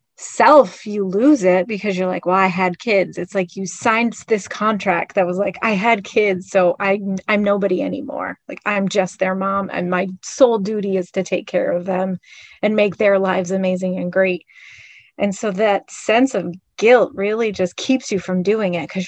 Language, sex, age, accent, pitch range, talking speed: English, female, 30-49, American, 185-240 Hz, 200 wpm